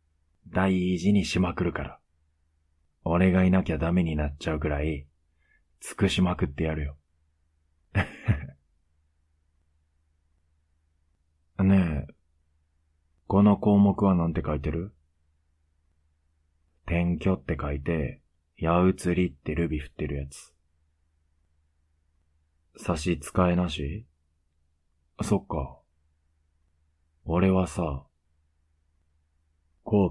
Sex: male